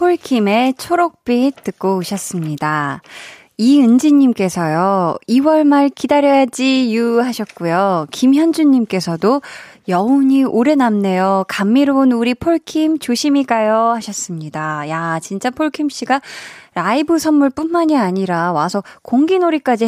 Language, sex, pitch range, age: Korean, female, 190-270 Hz, 20-39